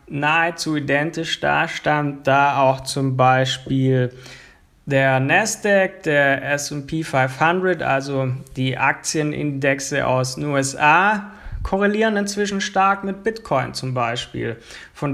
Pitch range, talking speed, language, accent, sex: 140-180 Hz, 105 wpm, German, German, male